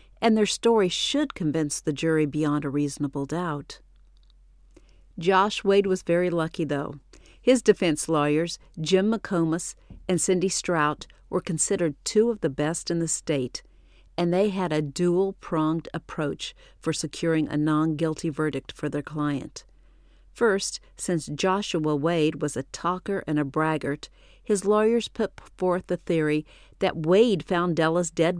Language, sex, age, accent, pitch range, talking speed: English, female, 50-69, American, 150-190 Hz, 145 wpm